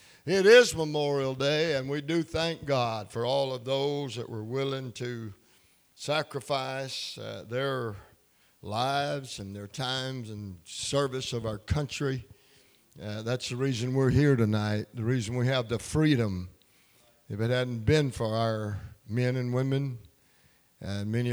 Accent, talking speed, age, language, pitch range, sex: American, 150 wpm, 60-79, English, 110-135 Hz, male